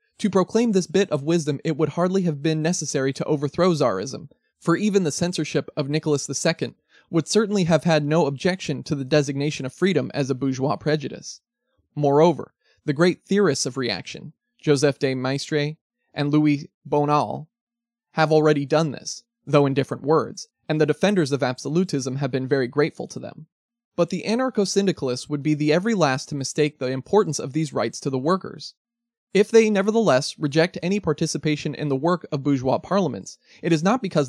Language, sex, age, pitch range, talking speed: English, male, 20-39, 145-180 Hz, 180 wpm